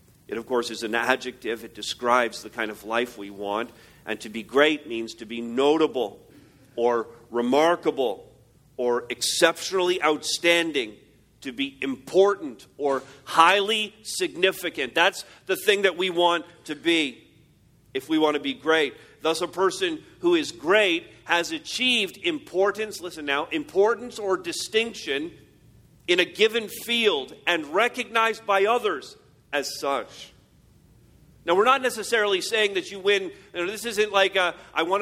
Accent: American